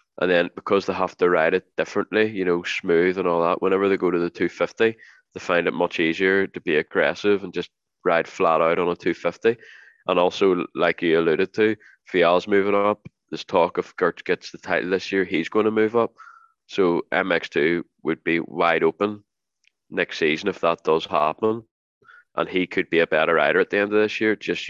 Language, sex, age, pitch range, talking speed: English, male, 20-39, 90-110 Hz, 210 wpm